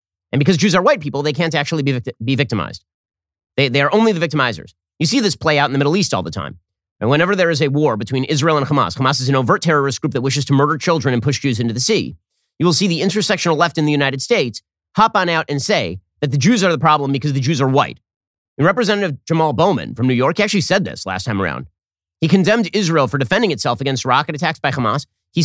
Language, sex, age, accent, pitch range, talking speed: English, male, 30-49, American, 110-165 Hz, 250 wpm